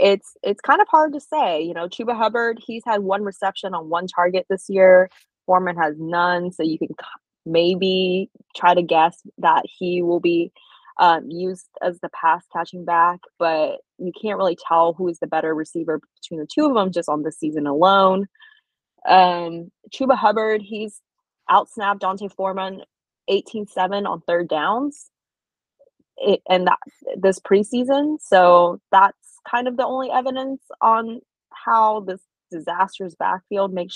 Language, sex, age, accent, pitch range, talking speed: English, female, 20-39, American, 170-220 Hz, 155 wpm